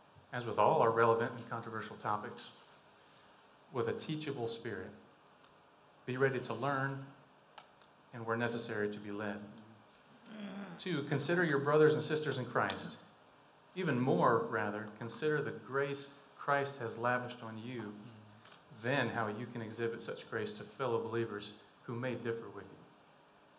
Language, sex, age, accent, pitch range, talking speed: English, male, 40-59, American, 115-140 Hz, 140 wpm